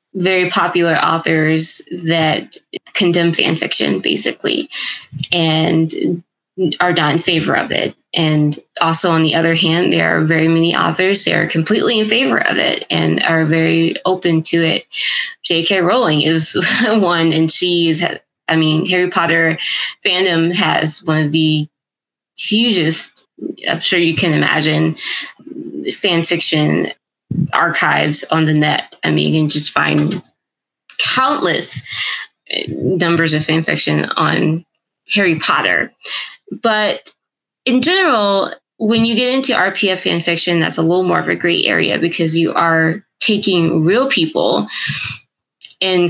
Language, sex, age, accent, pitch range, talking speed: English, female, 20-39, American, 160-185 Hz, 140 wpm